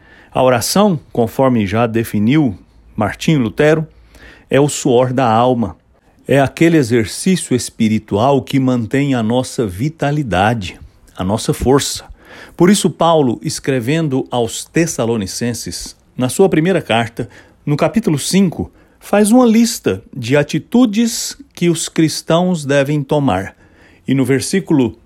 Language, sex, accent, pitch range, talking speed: English, male, Brazilian, 115-160 Hz, 120 wpm